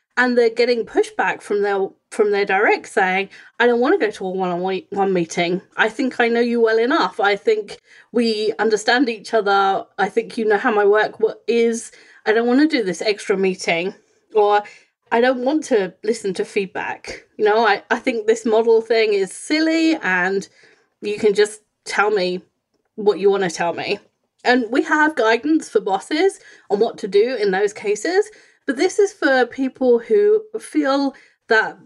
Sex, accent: female, British